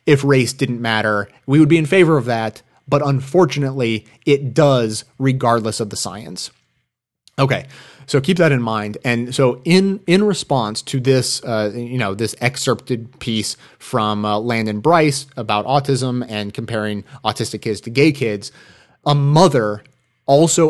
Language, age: English, 30-49